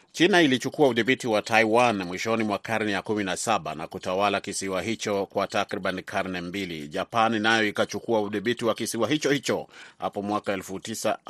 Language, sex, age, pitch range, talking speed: Swahili, male, 30-49, 100-120 Hz, 150 wpm